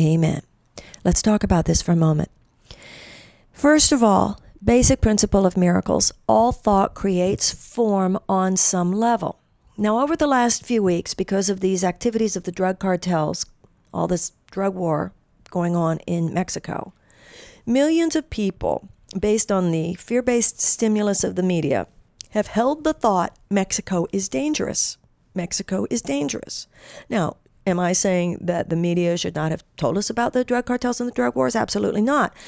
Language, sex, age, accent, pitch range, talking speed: English, female, 50-69, American, 175-225 Hz, 160 wpm